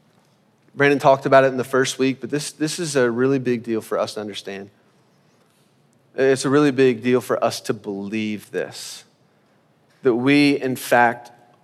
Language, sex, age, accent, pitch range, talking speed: English, male, 30-49, American, 120-140 Hz, 175 wpm